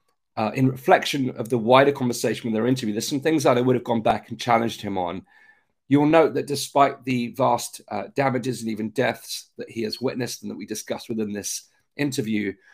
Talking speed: 210 wpm